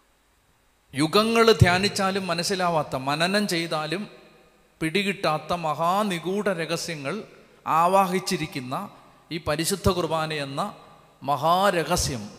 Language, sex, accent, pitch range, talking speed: Malayalam, male, native, 140-175 Hz, 70 wpm